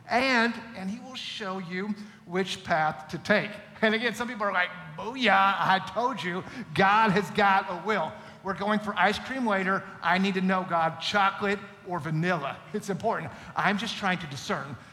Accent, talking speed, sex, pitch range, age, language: American, 185 wpm, male, 145-190 Hz, 50-69, English